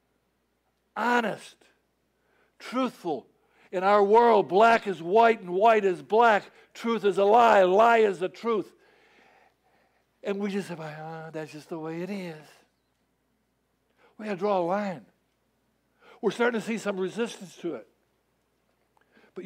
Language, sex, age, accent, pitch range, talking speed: English, male, 60-79, American, 165-210 Hz, 140 wpm